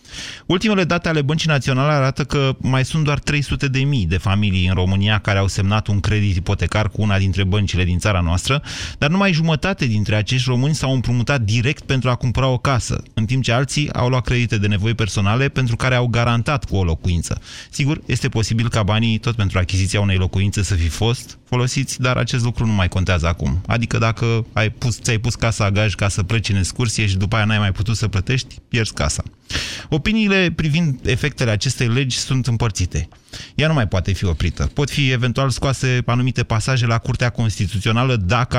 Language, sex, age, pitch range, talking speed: Romanian, male, 30-49, 105-130 Hz, 195 wpm